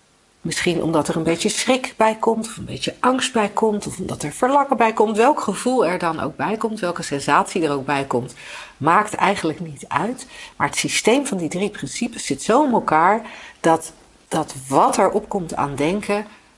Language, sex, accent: Dutch, female, Dutch